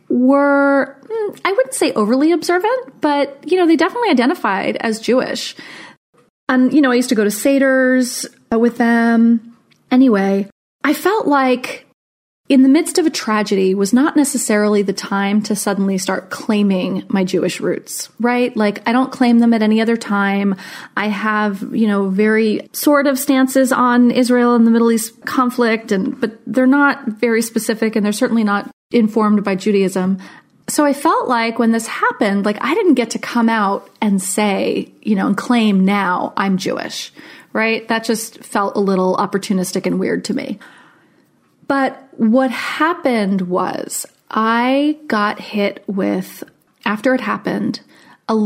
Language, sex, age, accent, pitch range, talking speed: English, female, 30-49, American, 205-270 Hz, 160 wpm